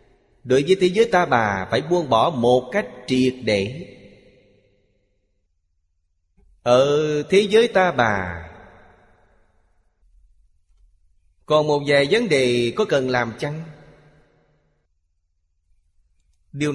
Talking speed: 100 wpm